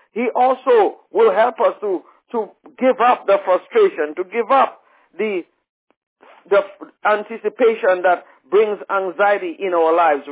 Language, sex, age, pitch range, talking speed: English, male, 50-69, 200-265 Hz, 135 wpm